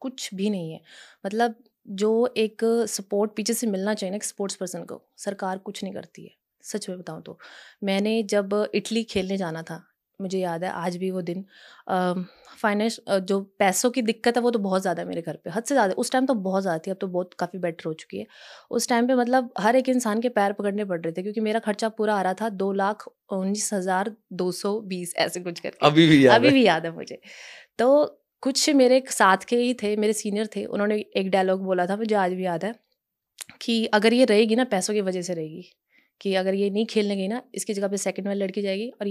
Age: 20-39